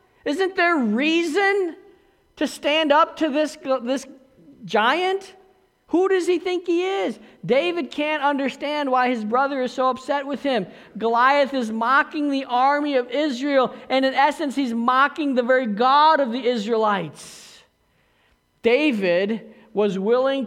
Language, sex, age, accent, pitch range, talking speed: English, male, 50-69, American, 225-290 Hz, 140 wpm